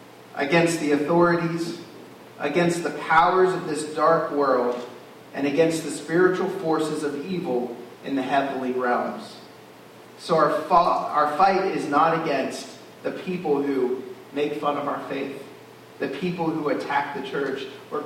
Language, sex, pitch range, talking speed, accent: English, male, 140-185 Hz, 145 wpm, American